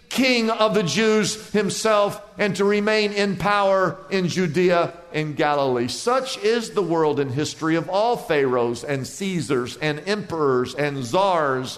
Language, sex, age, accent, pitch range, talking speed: English, male, 50-69, American, 145-215 Hz, 150 wpm